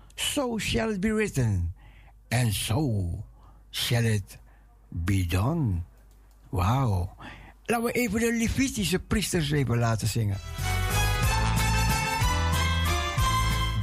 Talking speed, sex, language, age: 90 wpm, male, Dutch, 60-79